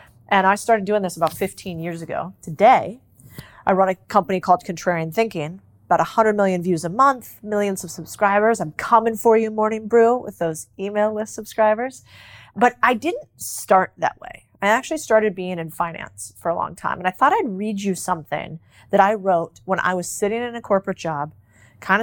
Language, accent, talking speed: English, American, 195 wpm